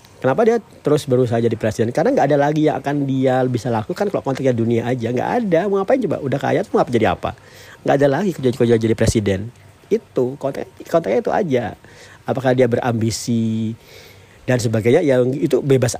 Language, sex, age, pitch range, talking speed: Indonesian, male, 40-59, 110-130 Hz, 195 wpm